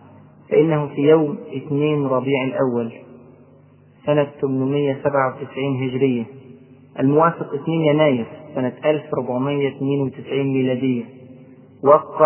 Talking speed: 80 wpm